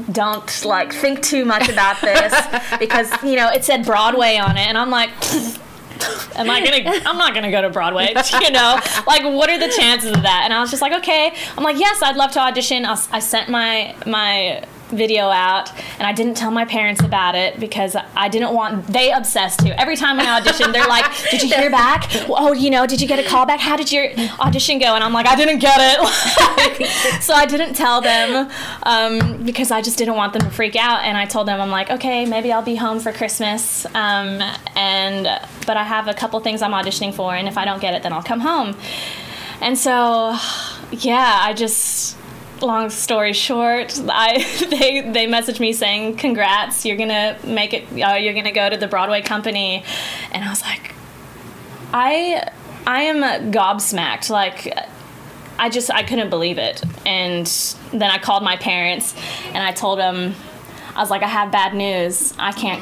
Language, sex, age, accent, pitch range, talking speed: English, female, 10-29, American, 200-255 Hz, 200 wpm